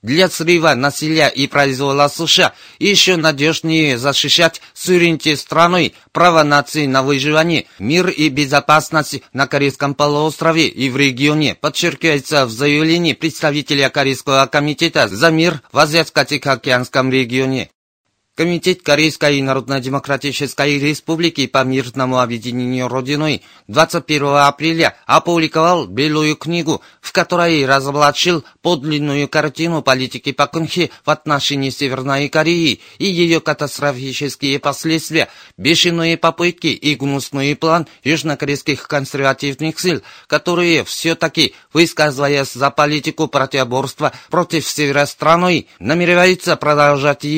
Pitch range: 140-165 Hz